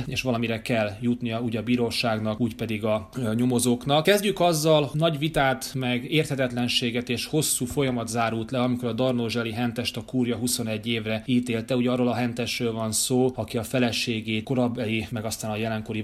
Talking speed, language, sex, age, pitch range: 170 wpm, Hungarian, male, 30-49, 110-130 Hz